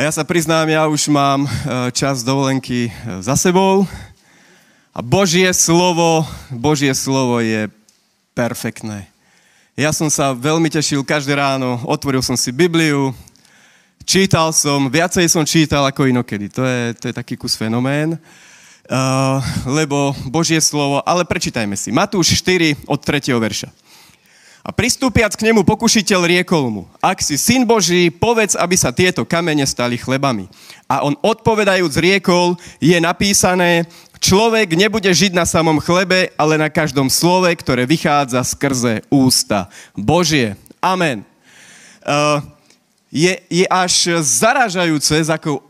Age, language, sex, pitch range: 30-49, Slovak, male, 135-175 Hz